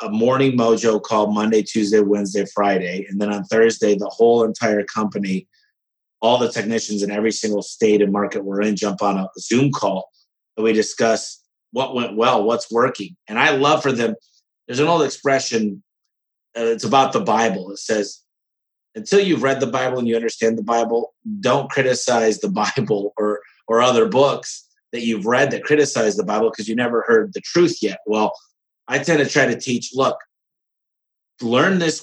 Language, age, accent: English, 30-49, American